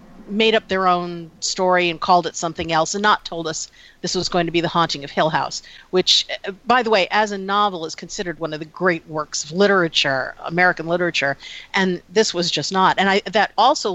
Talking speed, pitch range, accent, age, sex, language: 220 wpm, 165-215 Hz, American, 50-69, female, English